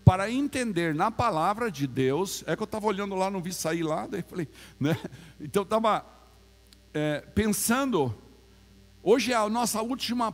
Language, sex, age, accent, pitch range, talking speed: Portuguese, male, 60-79, Brazilian, 150-220 Hz, 150 wpm